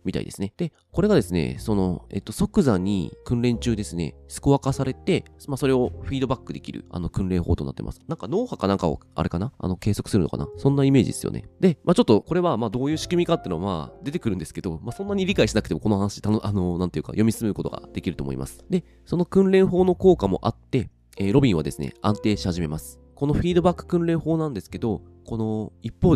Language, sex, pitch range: Japanese, male, 85-125 Hz